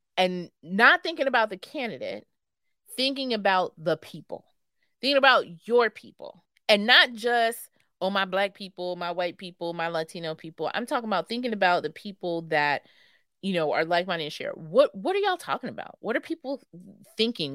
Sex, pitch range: female, 160-220 Hz